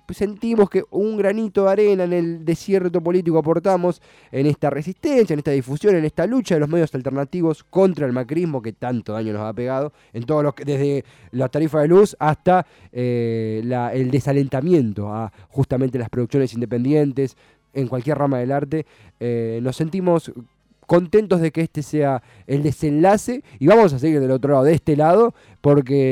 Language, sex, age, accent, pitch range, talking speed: Spanish, male, 20-39, Argentinian, 130-175 Hz, 180 wpm